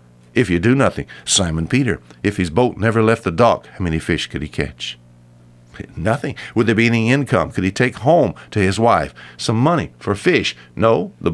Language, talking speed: English, 200 wpm